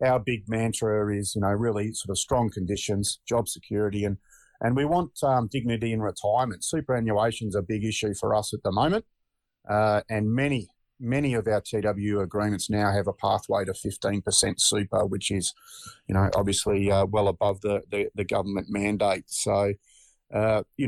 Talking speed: 180 wpm